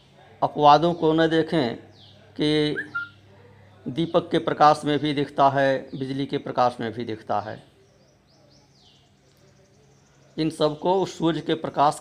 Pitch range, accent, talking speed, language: 115-155 Hz, native, 125 wpm, Hindi